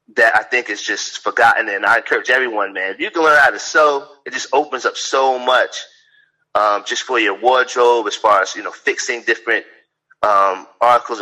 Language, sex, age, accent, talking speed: English, male, 30-49, American, 205 wpm